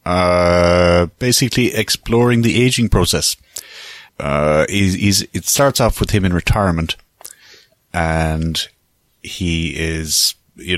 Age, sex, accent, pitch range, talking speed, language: 30-49, male, Irish, 85-105 Hz, 110 wpm, English